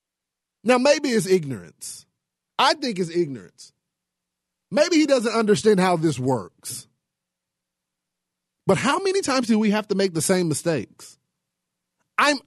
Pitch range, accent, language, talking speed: 155-255 Hz, American, English, 135 wpm